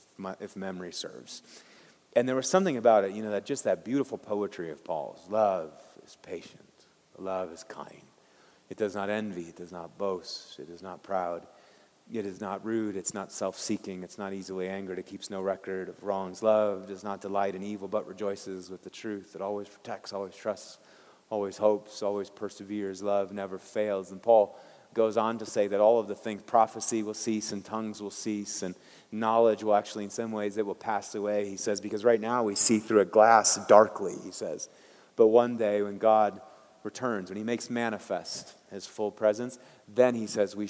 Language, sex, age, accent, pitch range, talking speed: English, male, 30-49, American, 100-110 Hz, 200 wpm